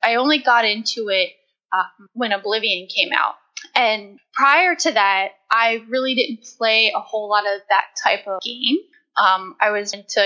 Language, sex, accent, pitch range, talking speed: English, female, American, 200-265 Hz, 175 wpm